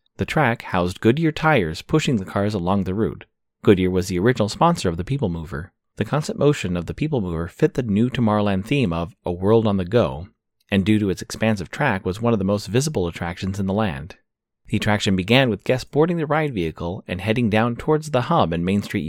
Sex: male